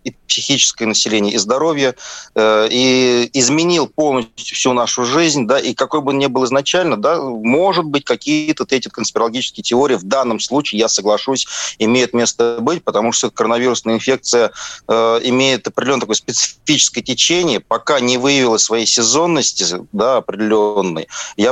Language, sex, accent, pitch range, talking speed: Russian, male, native, 110-140 Hz, 145 wpm